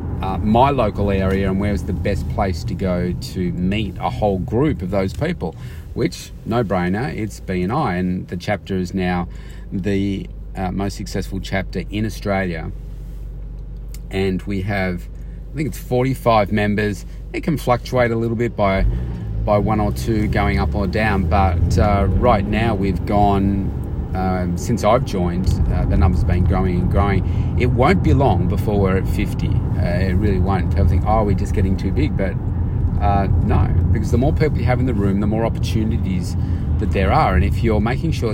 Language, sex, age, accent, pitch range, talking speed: English, male, 40-59, Australian, 90-105 Hz, 190 wpm